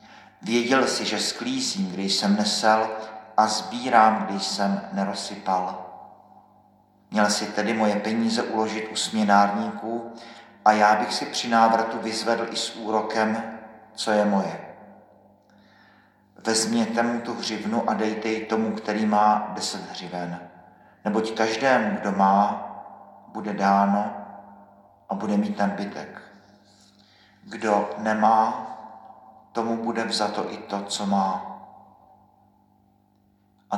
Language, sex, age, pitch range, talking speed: Czech, male, 50-69, 100-110 Hz, 115 wpm